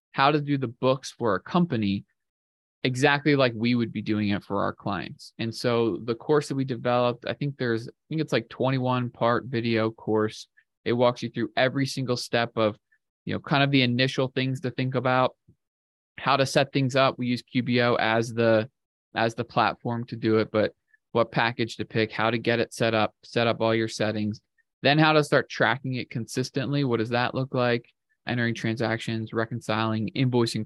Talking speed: 200 wpm